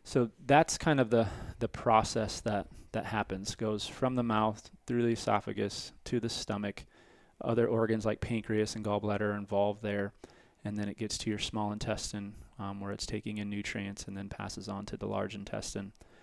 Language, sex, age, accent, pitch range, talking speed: English, male, 20-39, American, 100-110 Hz, 190 wpm